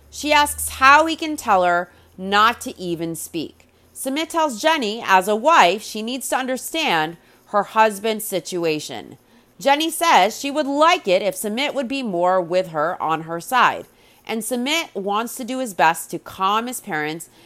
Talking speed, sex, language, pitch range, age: 175 wpm, female, English, 180-265 Hz, 30-49